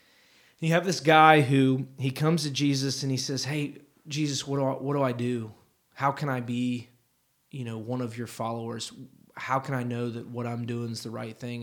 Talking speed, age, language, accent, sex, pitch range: 220 wpm, 20-39, English, American, male, 120-150 Hz